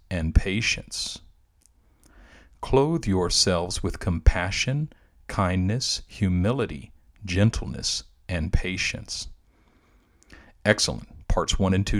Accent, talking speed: American, 75 wpm